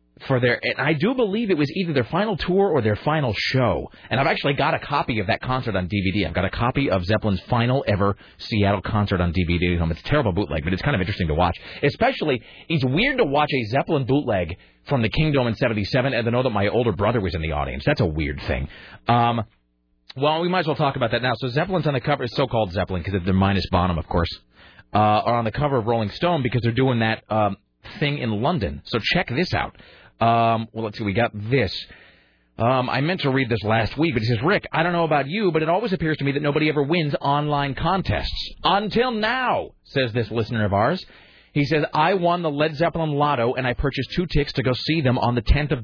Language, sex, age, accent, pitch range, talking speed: English, male, 30-49, American, 105-150 Hz, 245 wpm